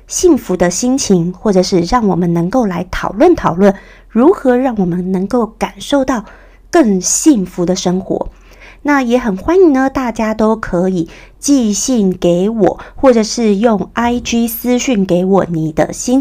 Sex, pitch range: female, 190-255 Hz